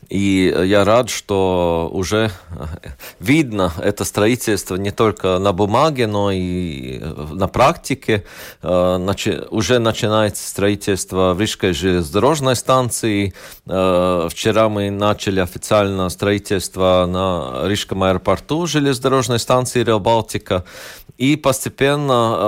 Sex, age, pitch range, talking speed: male, 40-59, 95-120 Hz, 100 wpm